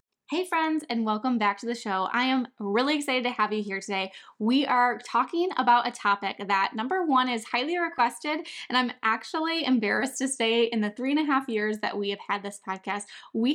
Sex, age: female, 10-29